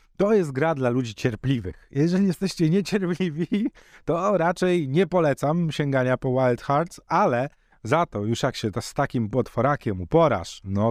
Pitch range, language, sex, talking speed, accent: 120-165 Hz, Polish, male, 160 wpm, native